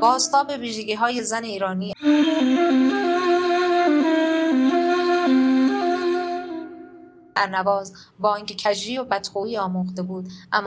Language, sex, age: Persian, female, 20-39